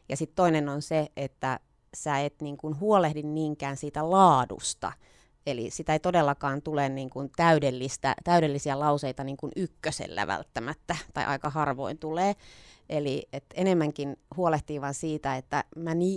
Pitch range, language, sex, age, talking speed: 145-170 Hz, Finnish, female, 30-49, 140 wpm